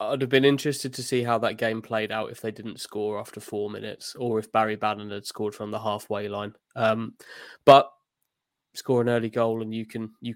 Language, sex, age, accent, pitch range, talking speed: English, male, 20-39, British, 110-120 Hz, 220 wpm